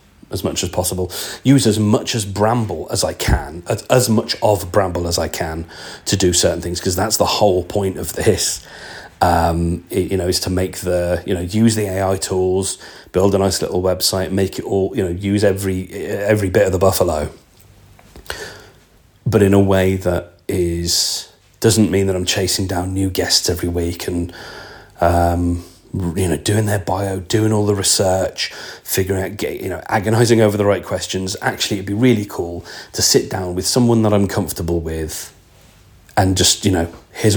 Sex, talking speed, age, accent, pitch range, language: male, 185 wpm, 40-59, British, 90-110 Hz, English